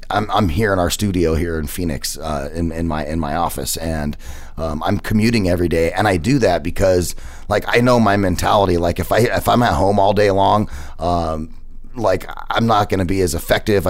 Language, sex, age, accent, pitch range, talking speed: English, male, 30-49, American, 80-100 Hz, 215 wpm